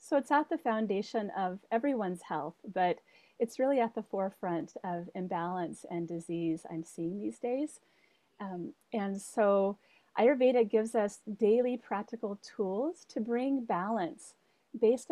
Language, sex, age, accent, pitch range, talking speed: English, female, 40-59, American, 180-225 Hz, 140 wpm